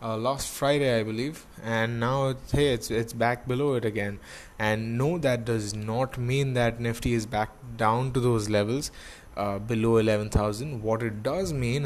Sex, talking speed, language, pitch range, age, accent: male, 180 wpm, English, 110-135 Hz, 20-39, Indian